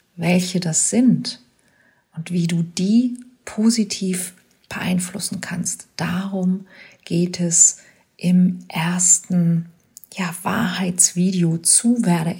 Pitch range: 170-195 Hz